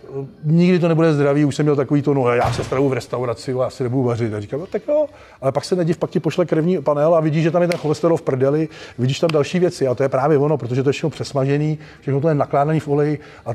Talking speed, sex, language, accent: 285 wpm, male, Czech, native